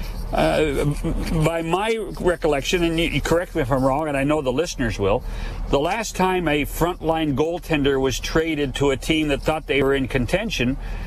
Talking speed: 190 wpm